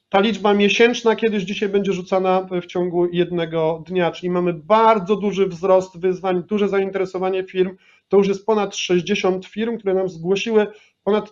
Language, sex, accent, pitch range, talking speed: Polish, male, native, 180-210 Hz, 160 wpm